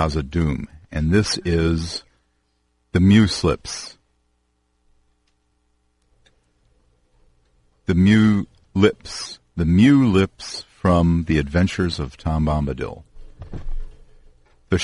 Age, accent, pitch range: 50-69, American, 75-95 Hz